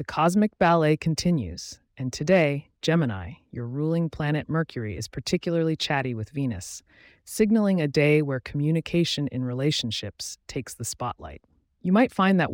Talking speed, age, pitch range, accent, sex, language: 145 wpm, 30-49, 115-165 Hz, American, female, English